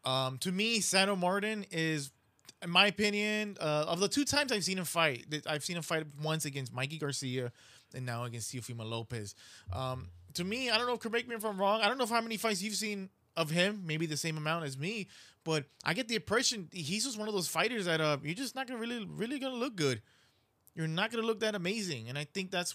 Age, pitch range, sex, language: 20-39, 140-195 Hz, male, English